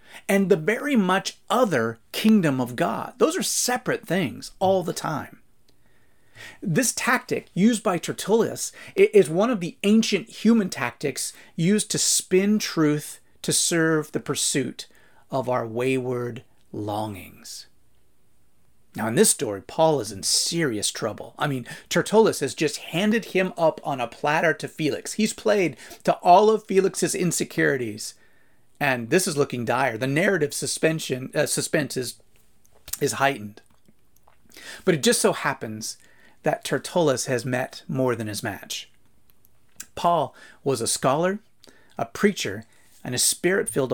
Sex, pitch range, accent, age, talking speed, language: male, 125-195 Hz, American, 30-49, 140 wpm, English